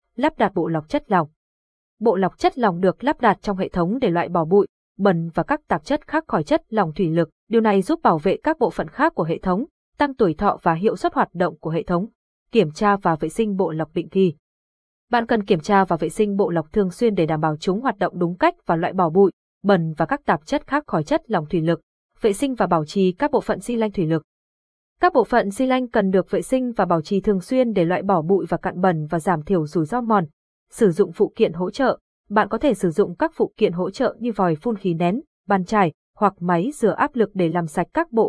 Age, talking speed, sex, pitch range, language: 20-39, 265 wpm, female, 175-230 Hz, Vietnamese